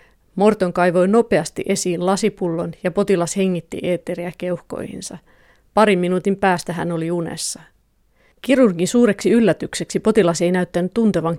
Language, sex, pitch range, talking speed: Finnish, female, 170-195 Hz, 120 wpm